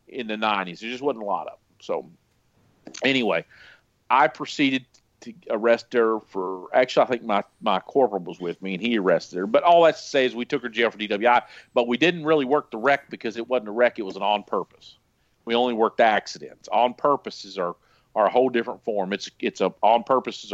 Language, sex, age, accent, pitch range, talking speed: English, male, 50-69, American, 100-120 Hz, 225 wpm